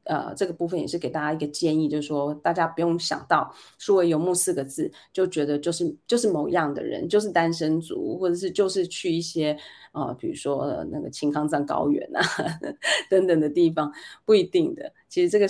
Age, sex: 20-39, female